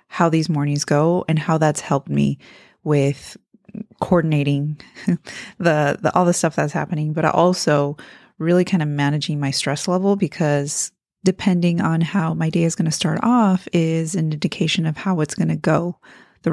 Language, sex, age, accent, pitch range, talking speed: English, female, 30-49, American, 155-195 Hz, 175 wpm